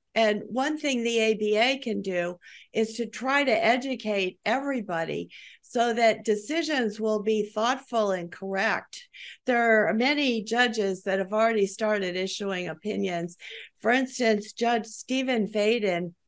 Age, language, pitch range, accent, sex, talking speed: 50-69, English, 190-230 Hz, American, female, 135 wpm